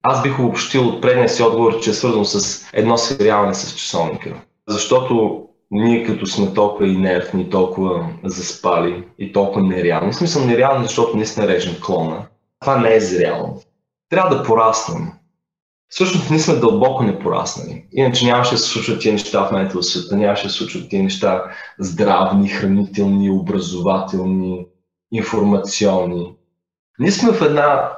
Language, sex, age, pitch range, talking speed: Bulgarian, male, 20-39, 100-135 Hz, 145 wpm